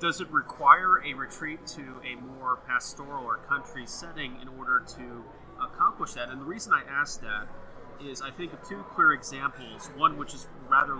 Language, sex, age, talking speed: English, male, 30-49, 185 wpm